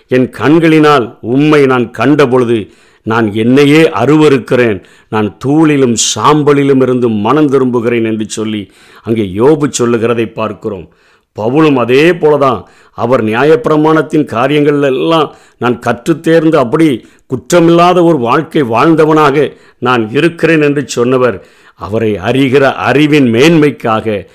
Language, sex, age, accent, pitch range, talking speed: Tamil, male, 50-69, native, 115-145 Hz, 105 wpm